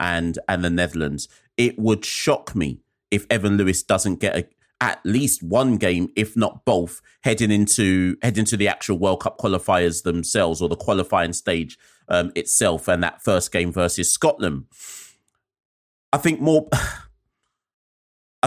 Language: English